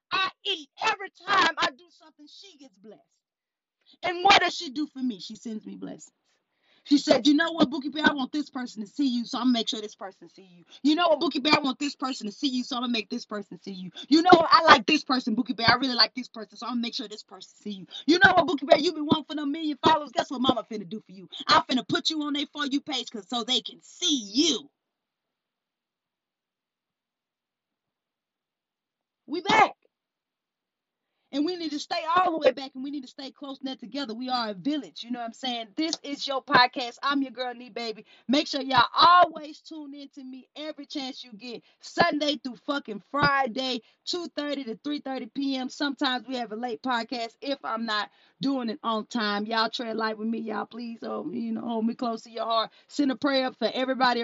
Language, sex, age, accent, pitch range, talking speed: English, female, 30-49, American, 230-295 Hz, 235 wpm